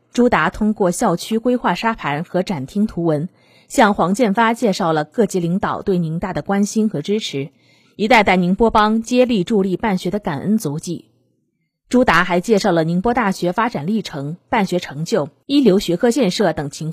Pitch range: 175-230 Hz